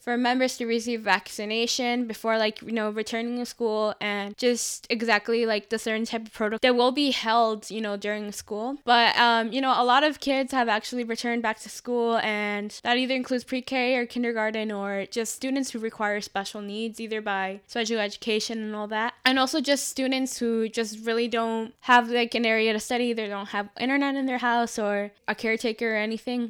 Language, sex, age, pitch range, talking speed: English, female, 10-29, 215-250 Hz, 205 wpm